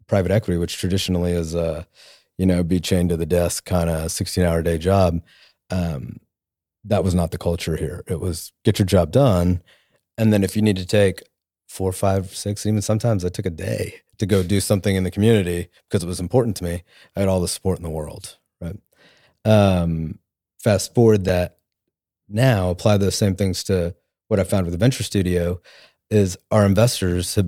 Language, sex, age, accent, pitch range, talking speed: English, male, 30-49, American, 90-105 Hz, 200 wpm